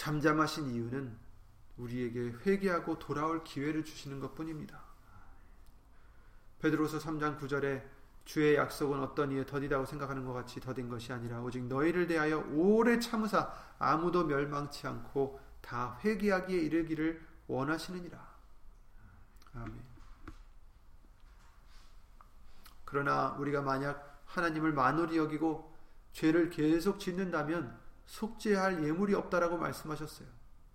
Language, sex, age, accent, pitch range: Korean, male, 30-49, native, 130-175 Hz